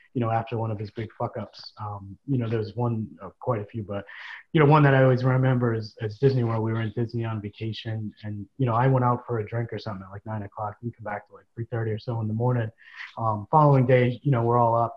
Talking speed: 275 wpm